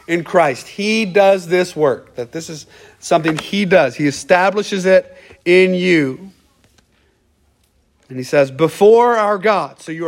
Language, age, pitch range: English, 40-59, 155-210 Hz